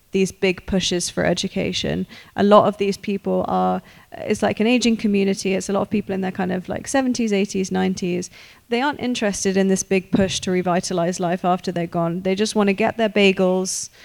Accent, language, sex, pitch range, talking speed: British, English, female, 185-210 Hz, 210 wpm